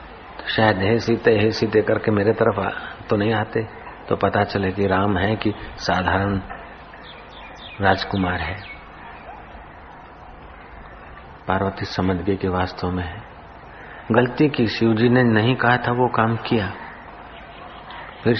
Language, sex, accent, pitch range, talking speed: Hindi, male, native, 95-120 Hz, 125 wpm